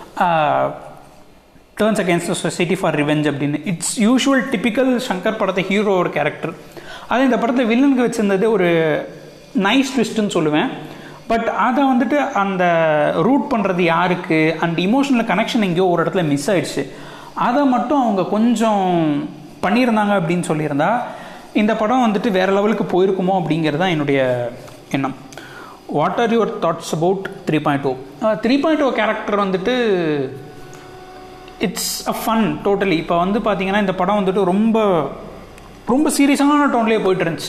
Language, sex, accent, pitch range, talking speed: Tamil, male, native, 170-230 Hz, 135 wpm